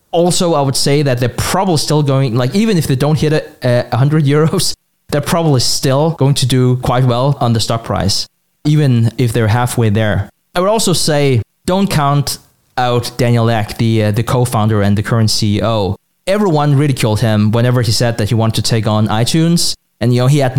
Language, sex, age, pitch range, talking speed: English, male, 20-39, 115-155 Hz, 210 wpm